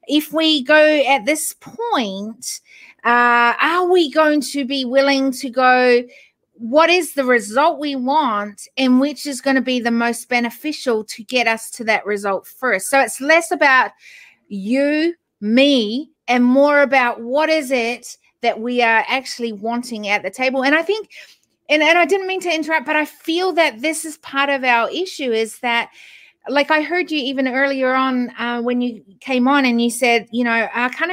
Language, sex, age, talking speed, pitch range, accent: English, female, 30-49, 190 wpm, 240-300 Hz, Australian